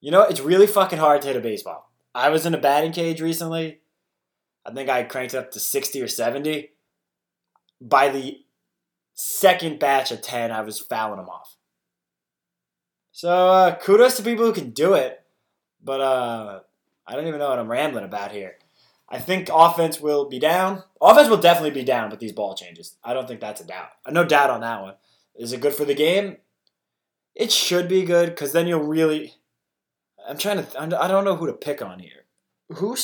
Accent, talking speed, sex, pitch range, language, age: American, 200 wpm, male, 125-180 Hz, English, 20-39